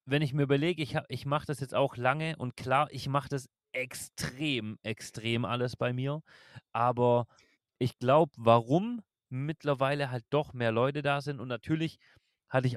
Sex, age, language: male, 30-49, German